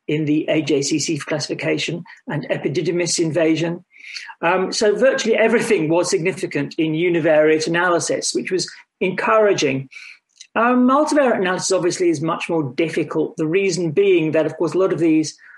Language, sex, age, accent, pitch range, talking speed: English, male, 40-59, British, 145-185 Hz, 145 wpm